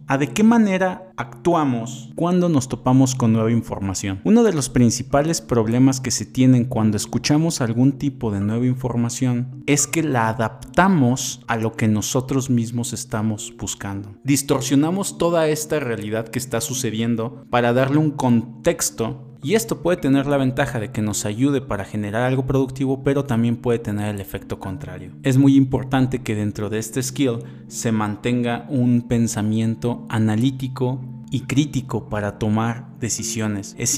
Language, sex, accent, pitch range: Spanish, male, Mexican, 110-135 Hz